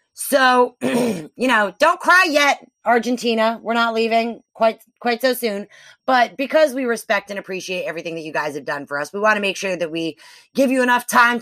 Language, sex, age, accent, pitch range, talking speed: English, female, 30-49, American, 180-235 Hz, 205 wpm